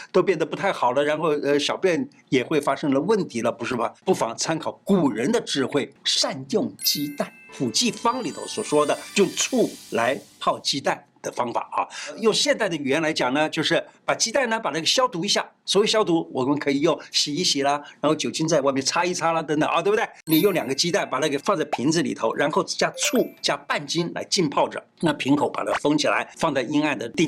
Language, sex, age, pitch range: Chinese, male, 50-69, 145-215 Hz